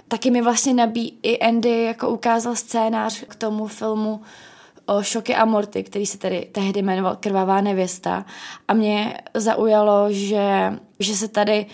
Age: 20-39